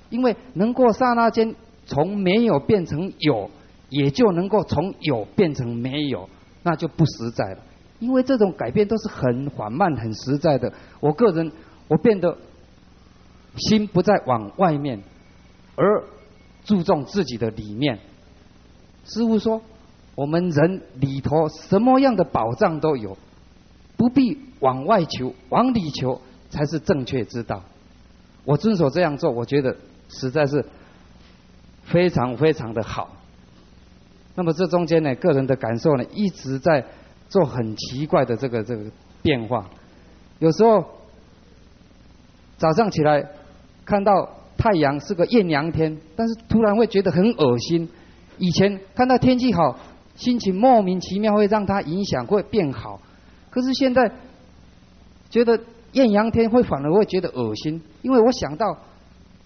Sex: male